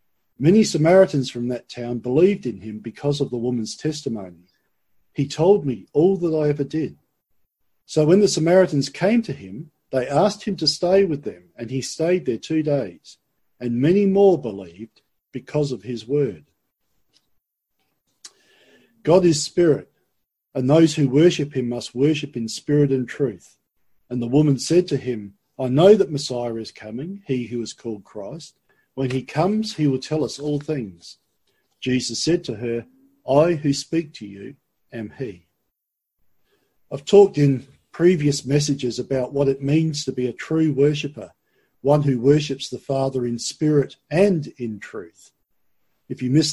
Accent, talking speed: Australian, 165 wpm